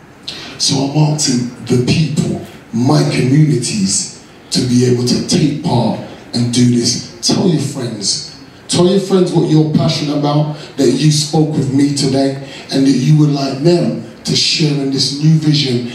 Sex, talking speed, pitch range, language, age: male, 170 wpm, 135-165 Hz, English, 30-49